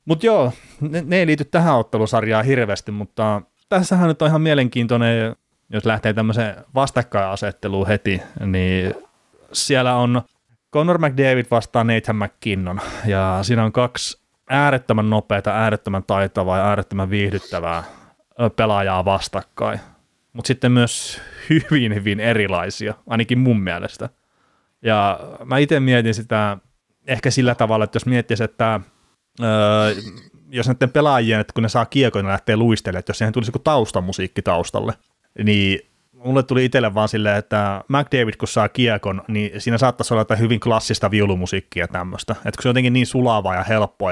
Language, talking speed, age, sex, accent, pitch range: Finnish, 150 wpm, 30-49, male, native, 100-125 Hz